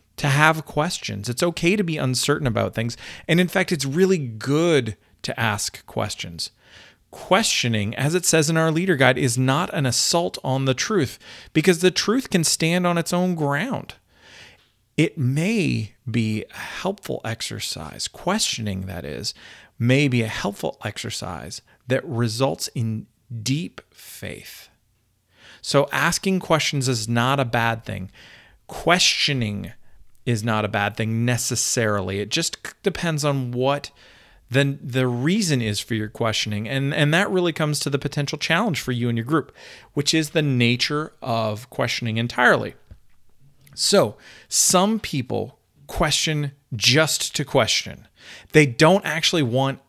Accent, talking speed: American, 145 wpm